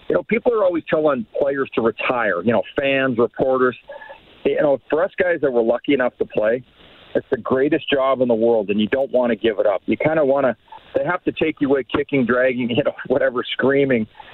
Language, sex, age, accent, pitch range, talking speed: English, male, 40-59, American, 120-150 Hz, 235 wpm